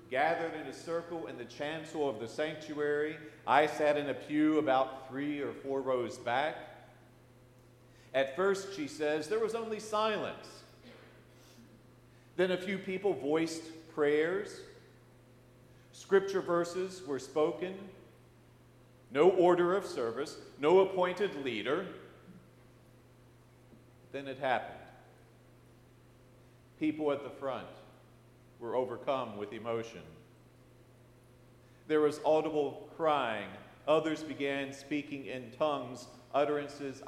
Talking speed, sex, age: 110 wpm, male, 50-69